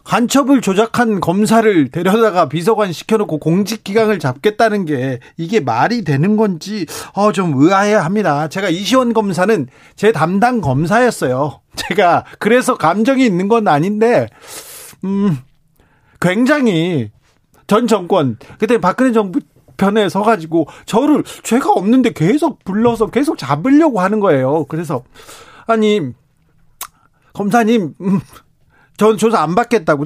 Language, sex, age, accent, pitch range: Korean, male, 40-59, native, 155-225 Hz